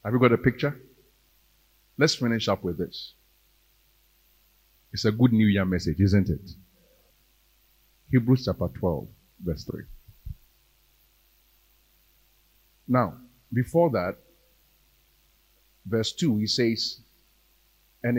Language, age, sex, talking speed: English, 50-69, male, 100 wpm